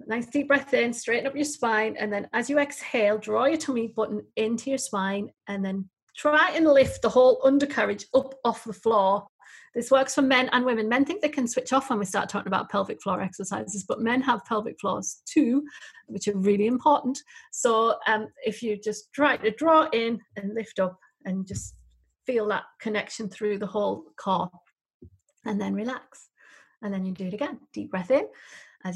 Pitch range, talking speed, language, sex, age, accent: 200-265 Hz, 200 wpm, English, female, 40-59, British